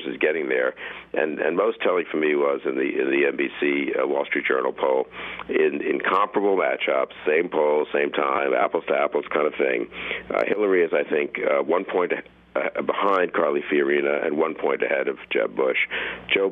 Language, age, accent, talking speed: English, 50-69, American, 195 wpm